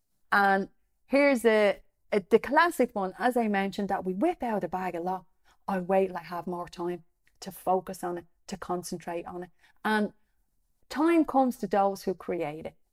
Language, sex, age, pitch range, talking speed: English, female, 30-49, 185-260 Hz, 190 wpm